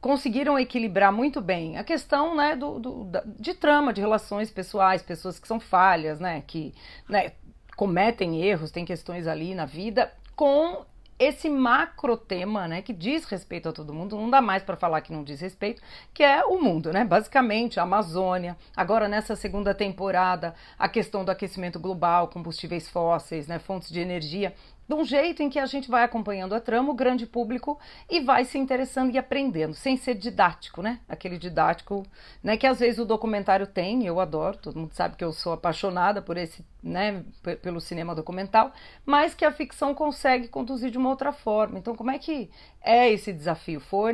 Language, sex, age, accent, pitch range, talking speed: Portuguese, female, 40-59, Brazilian, 175-250 Hz, 185 wpm